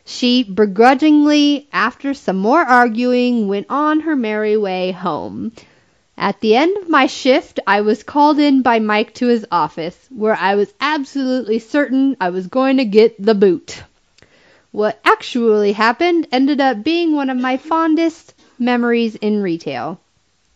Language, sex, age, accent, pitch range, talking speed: English, female, 30-49, American, 205-270 Hz, 150 wpm